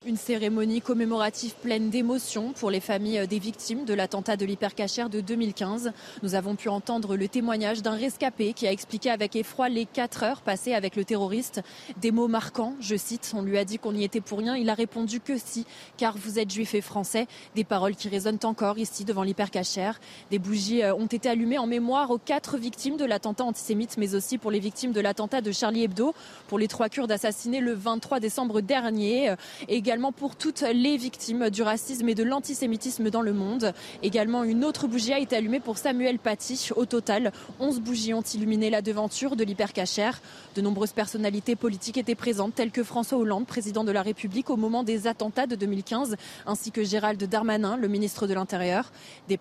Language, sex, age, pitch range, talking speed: French, female, 20-39, 205-240 Hz, 200 wpm